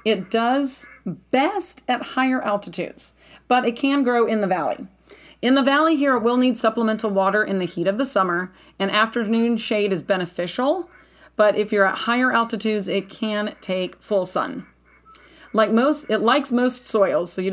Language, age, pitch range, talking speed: English, 40-59, 190-245 Hz, 180 wpm